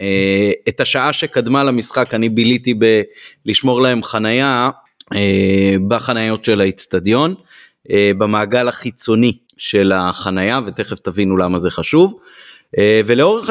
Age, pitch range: 30-49, 105-135 Hz